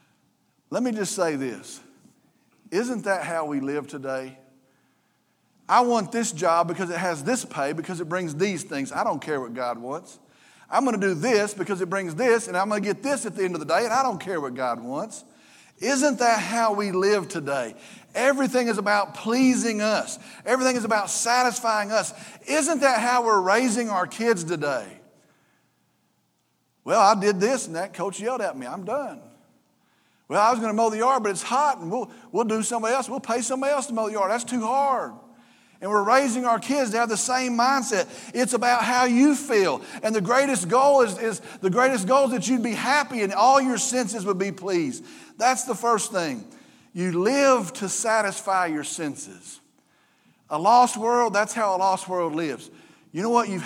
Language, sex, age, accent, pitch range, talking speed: English, male, 40-59, American, 190-250 Hz, 200 wpm